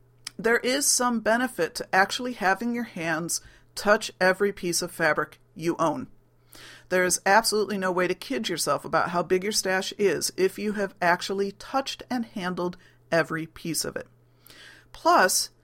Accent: American